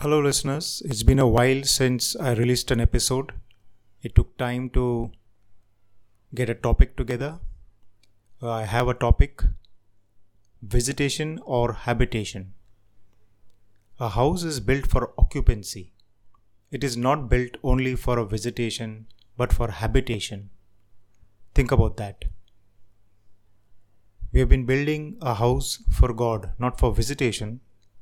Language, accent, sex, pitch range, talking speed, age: Hindi, native, male, 100-125 Hz, 125 wpm, 30-49